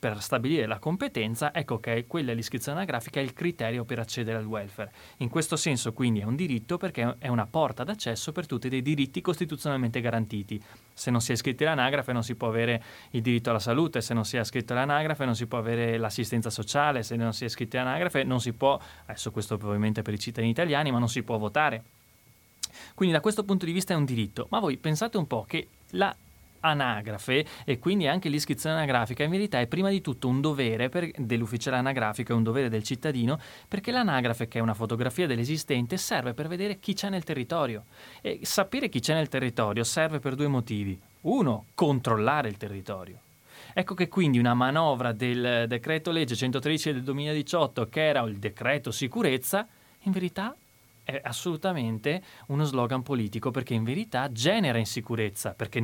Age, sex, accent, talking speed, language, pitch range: 30-49, male, native, 190 wpm, Italian, 115-155 Hz